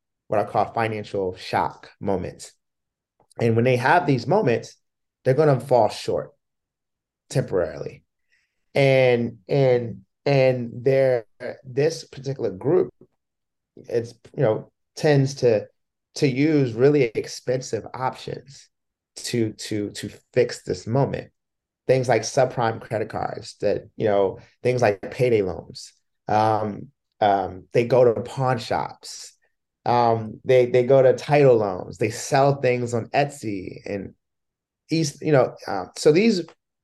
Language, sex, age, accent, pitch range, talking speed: English, male, 30-49, American, 115-145 Hz, 130 wpm